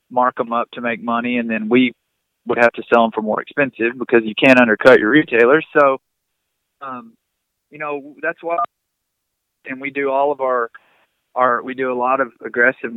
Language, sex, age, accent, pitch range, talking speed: English, male, 20-39, American, 115-140 Hz, 195 wpm